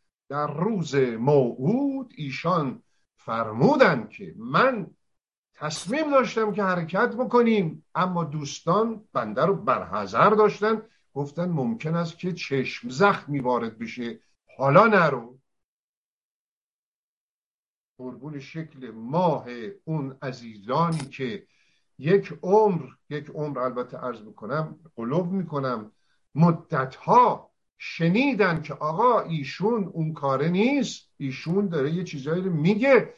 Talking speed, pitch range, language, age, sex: 105 wpm, 135-195 Hz, Persian, 50-69, male